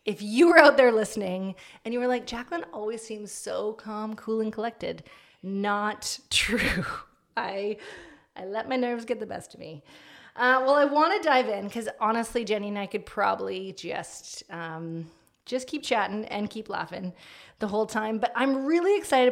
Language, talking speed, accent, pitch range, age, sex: English, 185 wpm, American, 190-235 Hz, 30-49, female